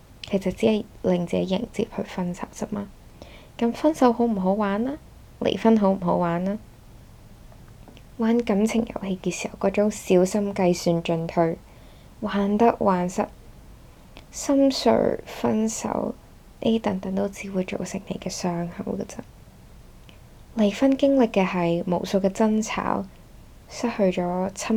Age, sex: 10-29, female